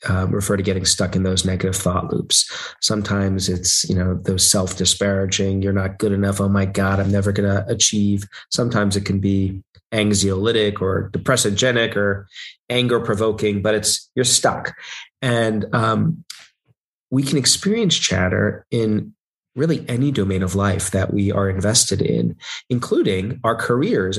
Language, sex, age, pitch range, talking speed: English, male, 30-49, 95-120 Hz, 155 wpm